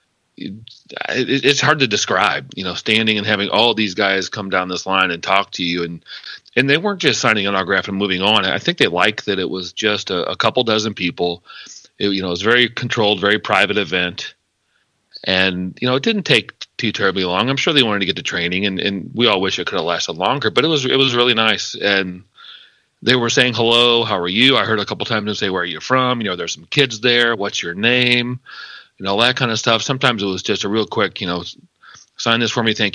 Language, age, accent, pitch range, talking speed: English, 40-59, American, 95-115 Hz, 250 wpm